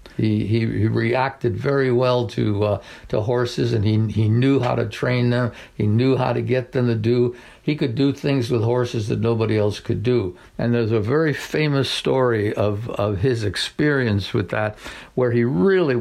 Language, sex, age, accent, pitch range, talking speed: English, male, 60-79, American, 115-145 Hz, 195 wpm